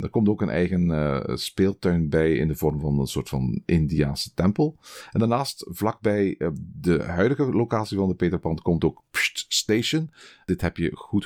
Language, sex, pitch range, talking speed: Dutch, male, 80-100 Hz, 185 wpm